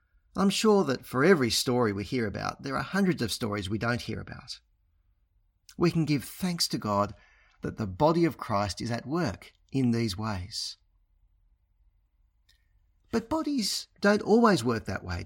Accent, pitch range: Australian, 95-150 Hz